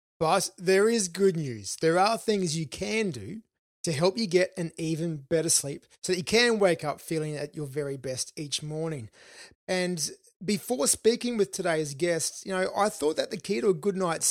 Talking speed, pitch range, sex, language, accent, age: 205 wpm, 155-195 Hz, male, English, Australian, 30-49